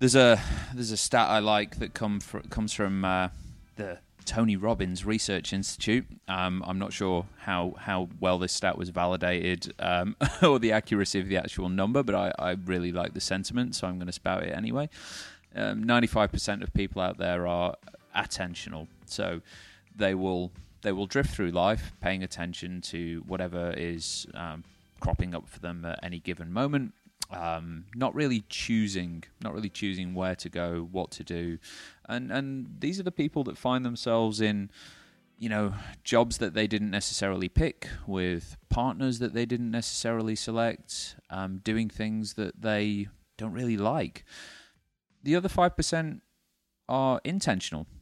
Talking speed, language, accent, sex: 165 wpm, English, British, male